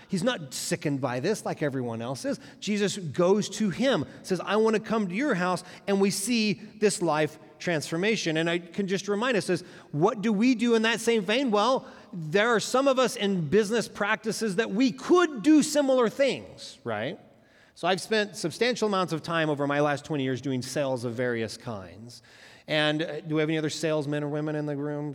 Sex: male